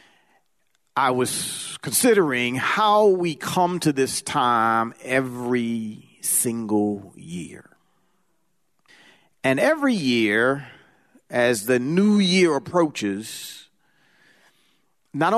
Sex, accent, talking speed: male, American, 80 wpm